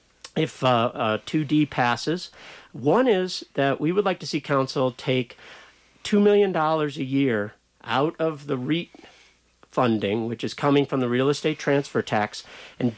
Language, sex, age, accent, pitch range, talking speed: English, male, 50-69, American, 125-160 Hz, 155 wpm